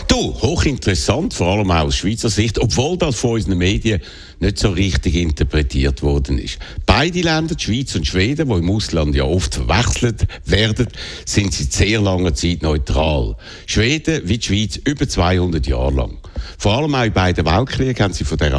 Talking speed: 180 wpm